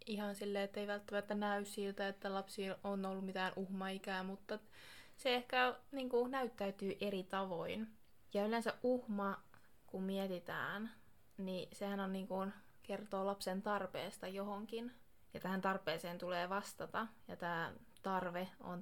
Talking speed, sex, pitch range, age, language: 125 wpm, female, 180-205 Hz, 20-39, Finnish